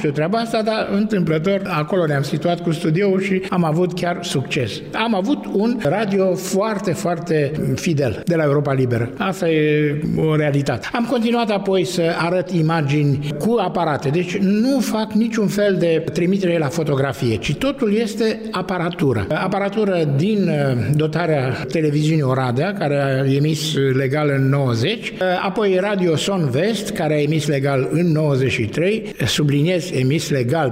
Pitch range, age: 145-195 Hz, 60-79